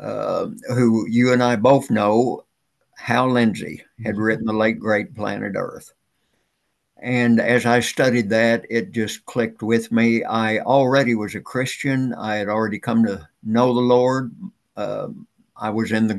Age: 60-79